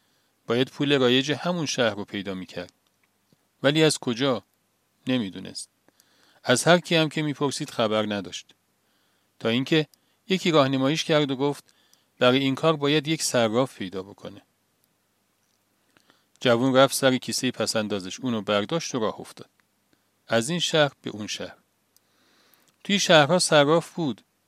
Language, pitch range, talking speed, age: Persian, 105-155 Hz, 135 wpm, 40-59